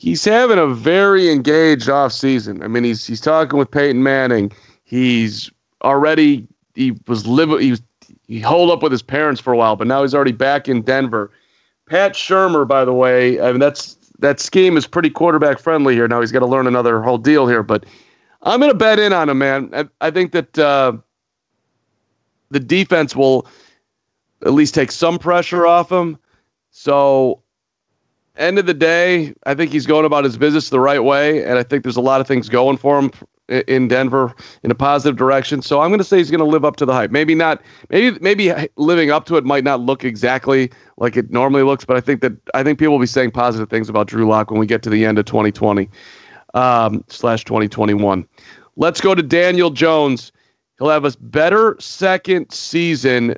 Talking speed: 205 wpm